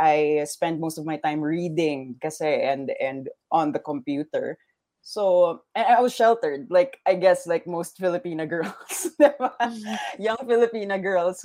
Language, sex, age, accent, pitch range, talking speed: English, female, 20-39, Filipino, 155-230 Hz, 140 wpm